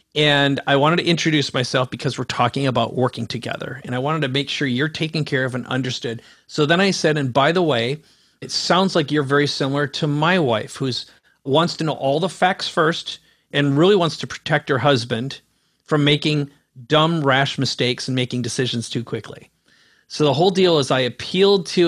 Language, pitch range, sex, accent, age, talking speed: English, 135-170 Hz, male, American, 40-59, 205 wpm